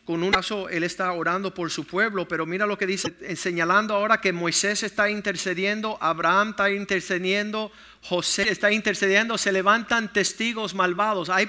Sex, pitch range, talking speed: male, 180-220 Hz, 160 wpm